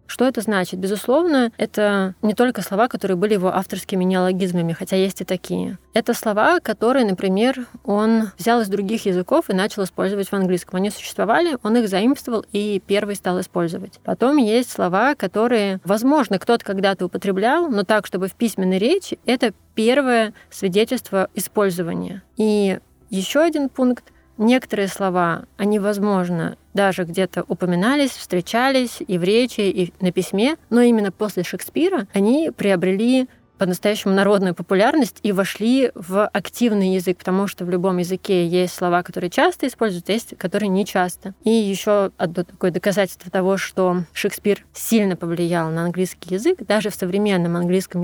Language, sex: Russian, female